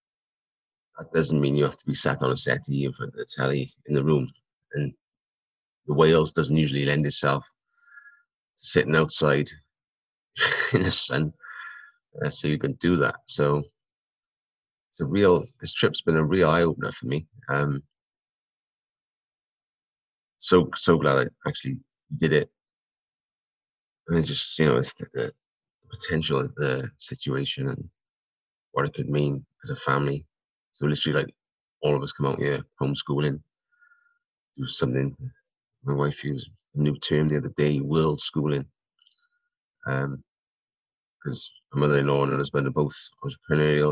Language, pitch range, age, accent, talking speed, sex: English, 70-80 Hz, 30-49, British, 150 wpm, male